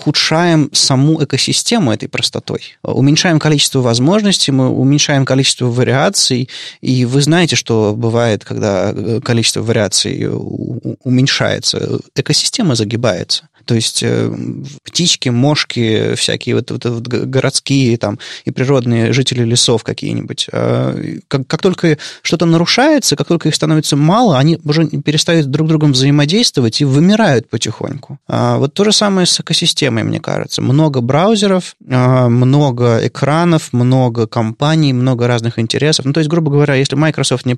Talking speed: 135 wpm